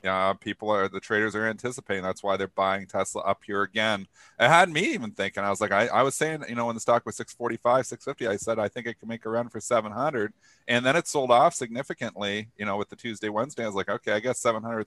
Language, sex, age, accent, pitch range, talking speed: English, male, 40-59, American, 105-125 Hz, 260 wpm